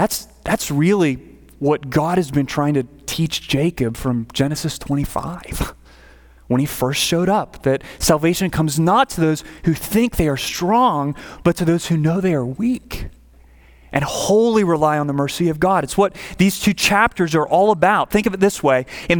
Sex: male